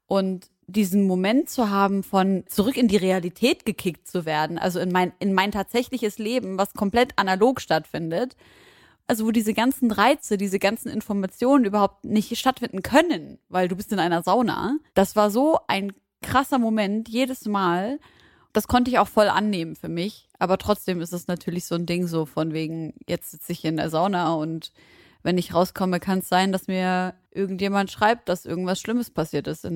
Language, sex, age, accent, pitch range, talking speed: German, female, 20-39, German, 175-210 Hz, 185 wpm